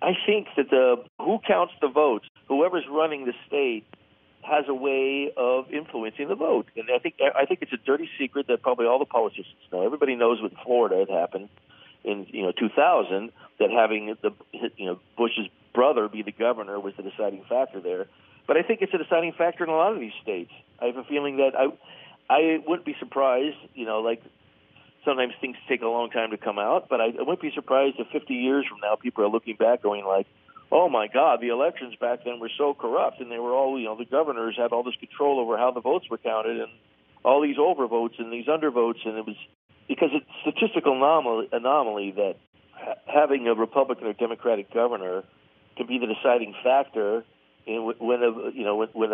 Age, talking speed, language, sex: 50-69, 215 wpm, English, male